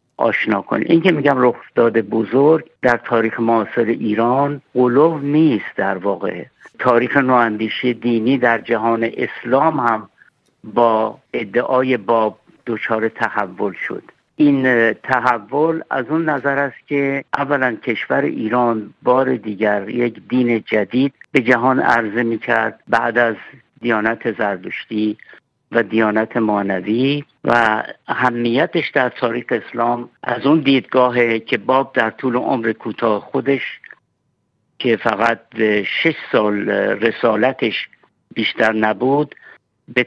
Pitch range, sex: 115-130 Hz, male